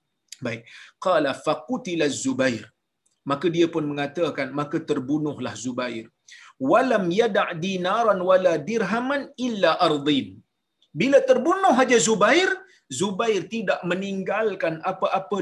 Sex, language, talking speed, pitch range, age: male, Malayalam, 110 wpm, 170-255 Hz, 40-59